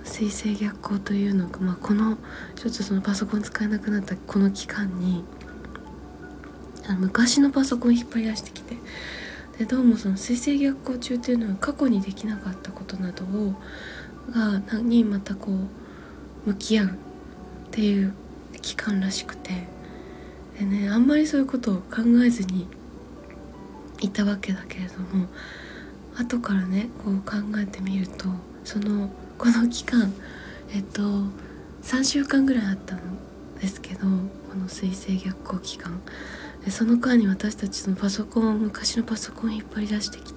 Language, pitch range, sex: Japanese, 195-235 Hz, female